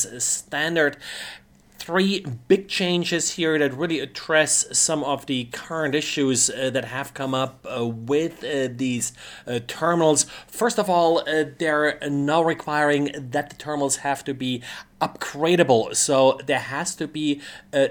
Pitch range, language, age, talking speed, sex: 135-155 Hz, English, 30-49, 145 wpm, male